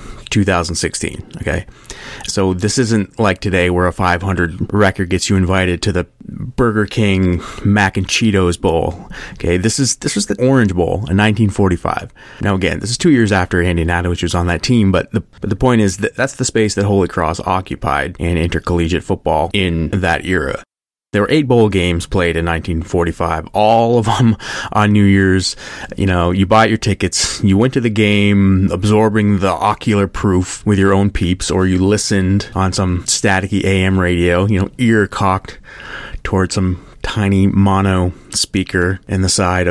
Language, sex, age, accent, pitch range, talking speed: English, male, 30-49, American, 85-105 Hz, 180 wpm